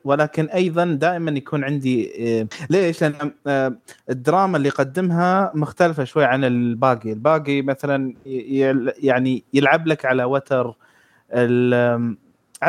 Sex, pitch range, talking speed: male, 130-155 Hz, 100 wpm